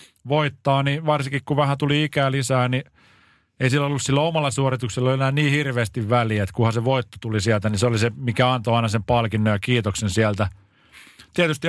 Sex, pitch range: male, 115-140 Hz